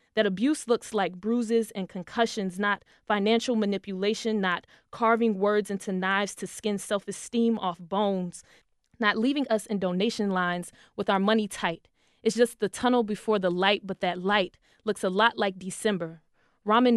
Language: English